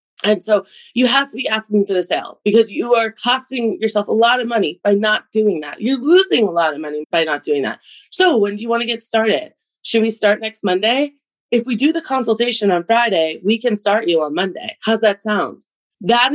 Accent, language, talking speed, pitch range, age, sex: American, English, 230 wpm, 190-230 Hz, 20-39, female